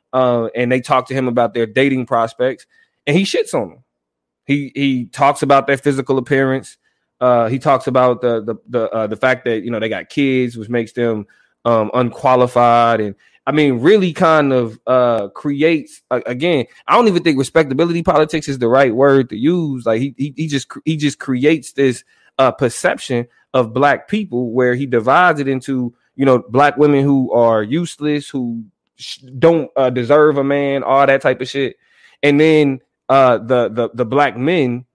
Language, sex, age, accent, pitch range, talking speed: English, male, 20-39, American, 125-160 Hz, 190 wpm